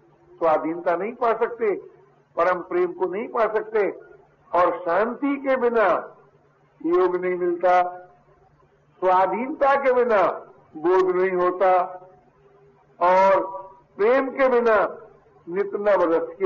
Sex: male